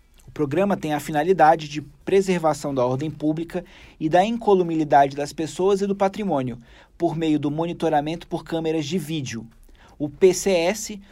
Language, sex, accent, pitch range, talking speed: Portuguese, male, Brazilian, 145-185 Hz, 150 wpm